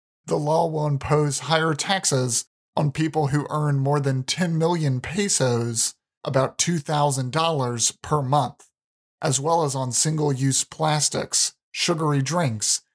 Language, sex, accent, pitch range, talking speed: English, male, American, 130-155 Hz, 125 wpm